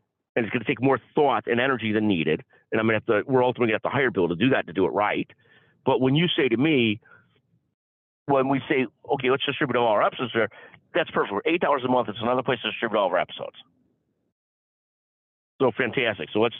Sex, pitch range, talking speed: male, 115-140 Hz, 240 wpm